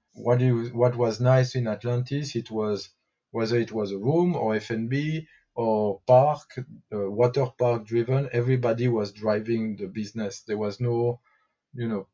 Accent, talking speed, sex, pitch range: French, 150 wpm, male, 105-130 Hz